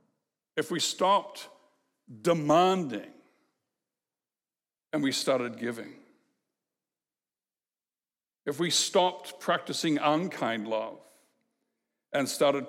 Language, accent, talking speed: English, American, 75 wpm